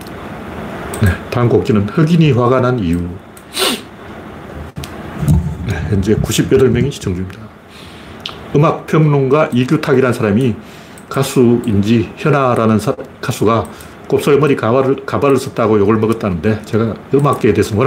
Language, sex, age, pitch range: Korean, male, 40-59, 105-135 Hz